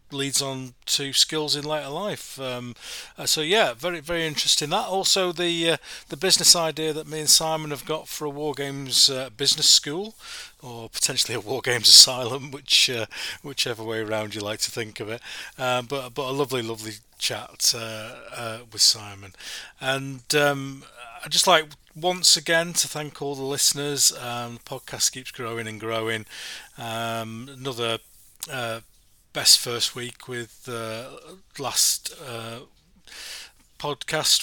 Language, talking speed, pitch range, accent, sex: English, 160 wpm, 115-145 Hz, British, male